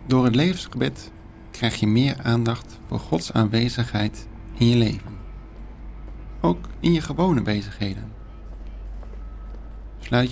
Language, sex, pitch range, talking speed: Dutch, male, 100-125 Hz, 110 wpm